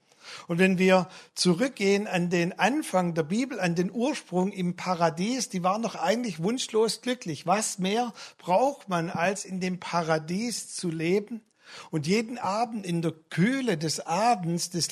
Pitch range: 165-220 Hz